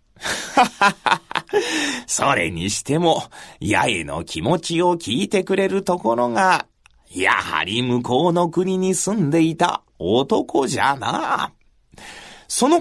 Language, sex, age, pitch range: Japanese, male, 40-59, 165-240 Hz